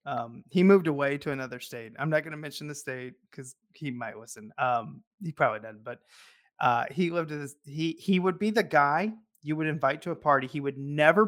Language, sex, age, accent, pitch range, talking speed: English, male, 30-49, American, 140-185 Hz, 225 wpm